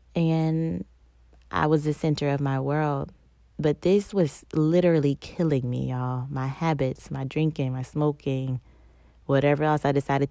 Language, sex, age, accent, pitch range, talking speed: English, female, 20-39, American, 125-150 Hz, 145 wpm